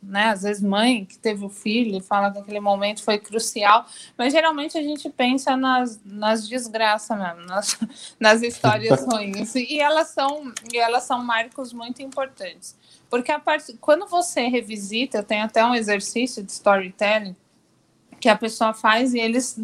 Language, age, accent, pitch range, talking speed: Portuguese, 20-39, Brazilian, 215-270 Hz, 165 wpm